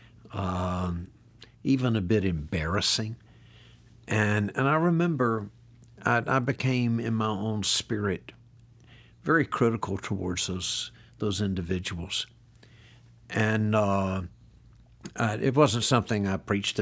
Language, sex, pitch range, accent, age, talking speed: English, male, 100-120 Hz, American, 60-79, 105 wpm